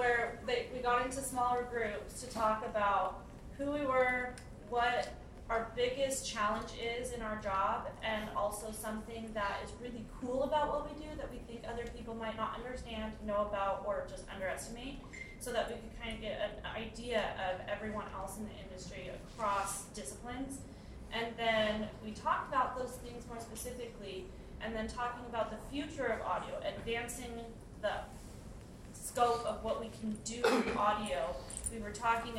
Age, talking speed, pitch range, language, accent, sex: 20-39, 170 wpm, 215-250 Hz, English, American, female